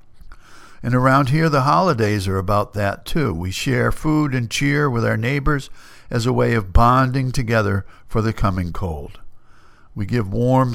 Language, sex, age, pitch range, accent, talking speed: English, male, 60-79, 100-130 Hz, American, 165 wpm